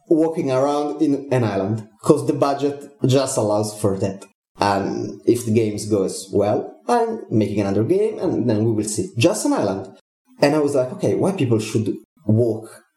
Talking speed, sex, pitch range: 180 wpm, male, 110-155 Hz